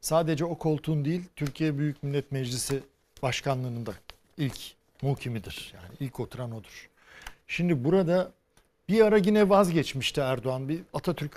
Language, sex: Turkish, male